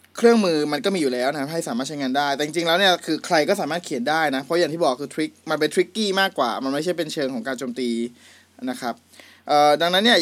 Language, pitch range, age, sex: Thai, 135-185 Hz, 20-39, male